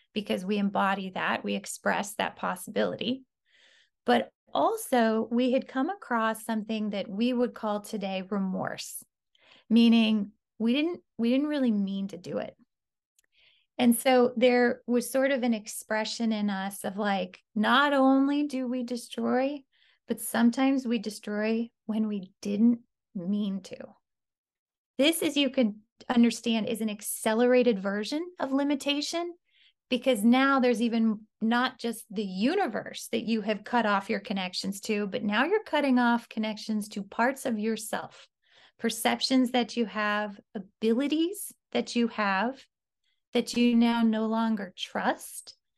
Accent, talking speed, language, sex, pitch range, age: American, 140 wpm, English, female, 215-255 Hz, 30-49